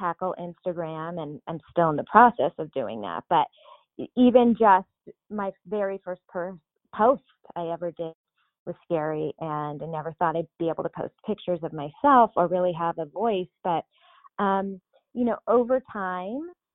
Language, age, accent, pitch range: English, 20-39, American, 170-210 Hz